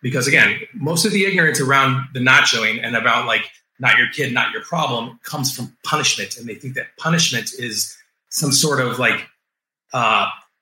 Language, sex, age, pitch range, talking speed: English, male, 30-49, 125-165 Hz, 185 wpm